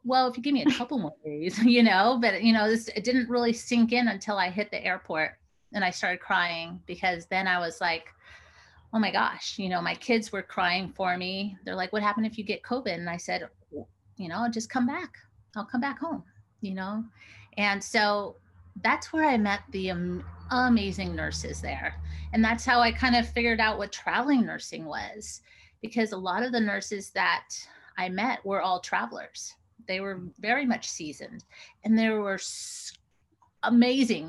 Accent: American